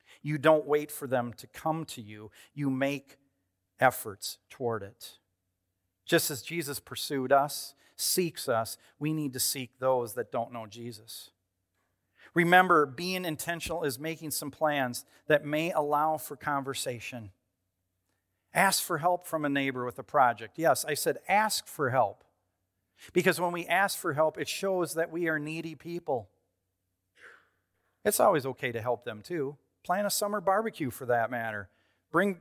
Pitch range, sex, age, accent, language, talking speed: 105-170 Hz, male, 40-59, American, English, 155 wpm